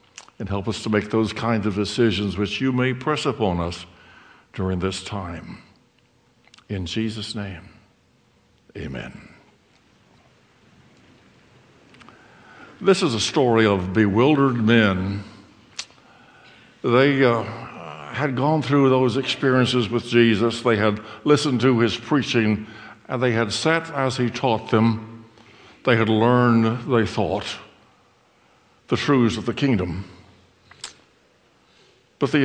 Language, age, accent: English, 60-79, American